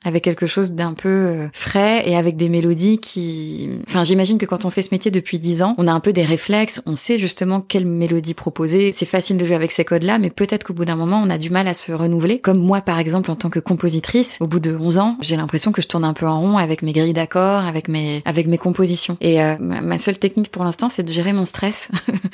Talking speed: 260 wpm